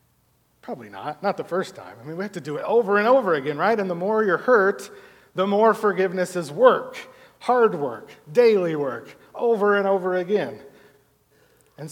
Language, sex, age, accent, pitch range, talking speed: English, male, 40-59, American, 145-180 Hz, 185 wpm